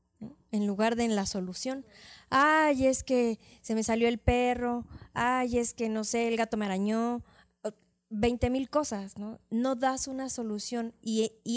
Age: 20-39